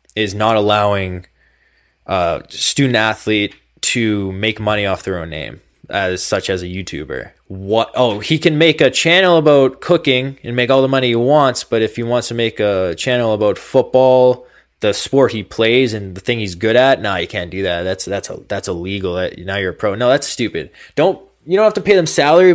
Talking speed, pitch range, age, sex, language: 215 wpm, 95-125 Hz, 20-39, male, English